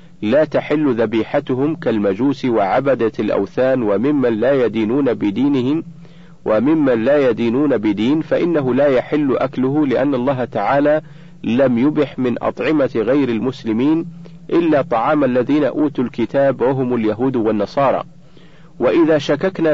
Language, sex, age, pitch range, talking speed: Arabic, male, 50-69, 130-170 Hz, 115 wpm